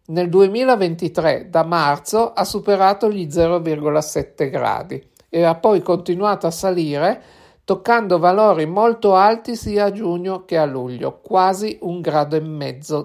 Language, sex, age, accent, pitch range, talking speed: Italian, male, 60-79, native, 160-195 Hz, 140 wpm